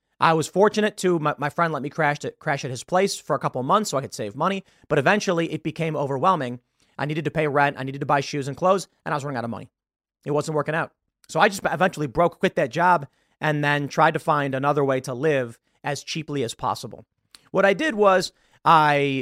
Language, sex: English, male